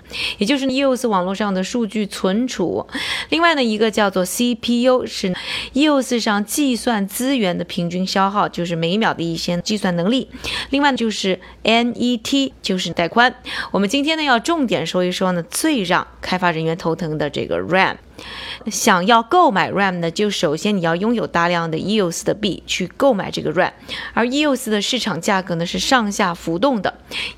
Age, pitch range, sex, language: 20-39, 180-245 Hz, female, Chinese